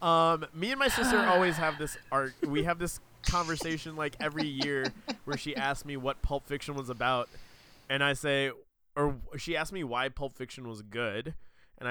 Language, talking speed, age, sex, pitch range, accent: English, 190 wpm, 20-39, male, 115-145 Hz, American